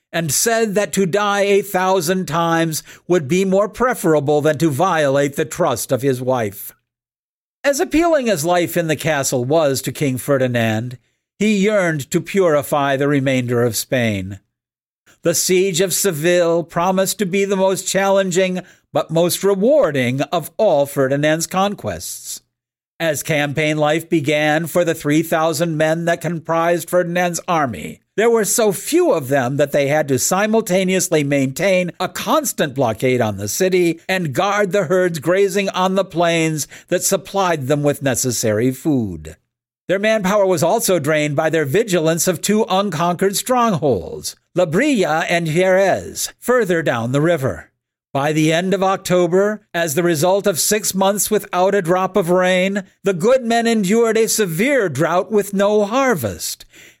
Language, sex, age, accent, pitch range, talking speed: English, male, 50-69, American, 150-195 Hz, 155 wpm